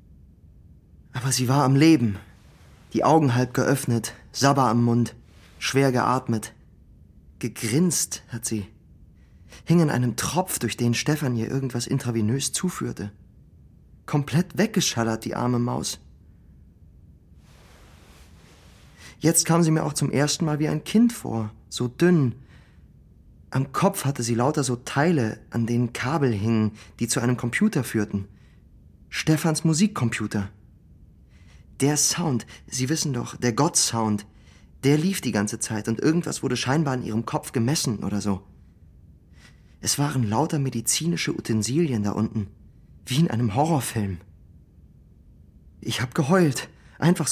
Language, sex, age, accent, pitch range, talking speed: German, male, 30-49, German, 100-145 Hz, 130 wpm